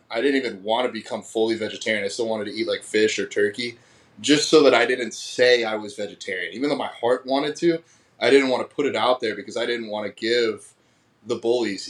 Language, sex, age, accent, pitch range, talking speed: English, male, 20-39, American, 105-130 Hz, 240 wpm